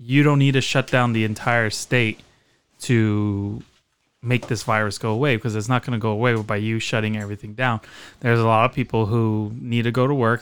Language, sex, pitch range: English, male, 110-130 Hz